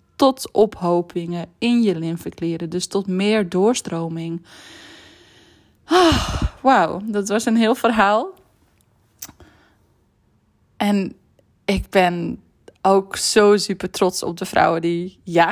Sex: female